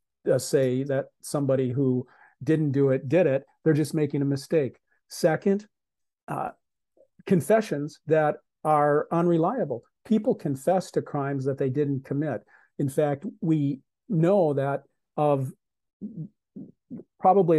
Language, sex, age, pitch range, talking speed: English, male, 50-69, 135-165 Hz, 125 wpm